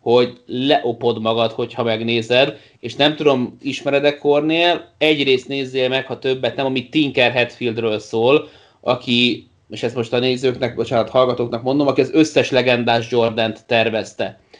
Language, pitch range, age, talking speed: Hungarian, 120-140 Hz, 30-49, 145 wpm